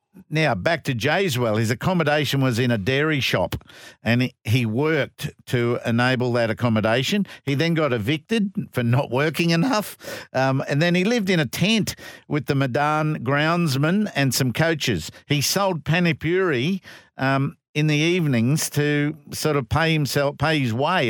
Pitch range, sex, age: 125-165 Hz, male, 50-69